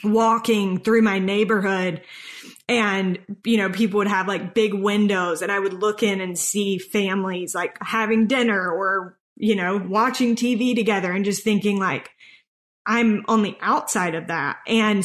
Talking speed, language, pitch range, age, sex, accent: 165 wpm, English, 185-215 Hz, 20-39, female, American